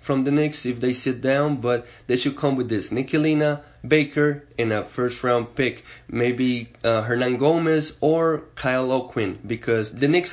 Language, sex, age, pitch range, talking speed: English, male, 20-39, 120-145 Hz, 170 wpm